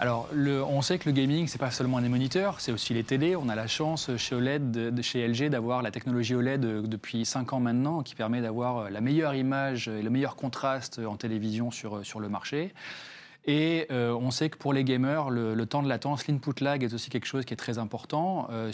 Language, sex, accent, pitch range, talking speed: French, male, French, 115-135 Hz, 245 wpm